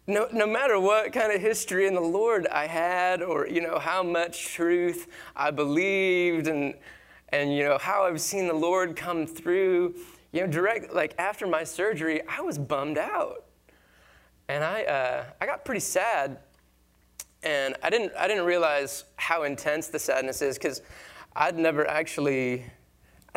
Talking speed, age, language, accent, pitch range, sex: 165 wpm, 20-39, English, American, 135-175 Hz, male